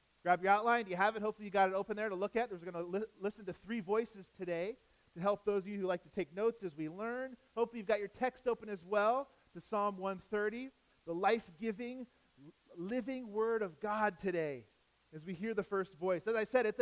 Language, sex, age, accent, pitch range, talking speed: English, male, 40-59, American, 155-220 Hz, 235 wpm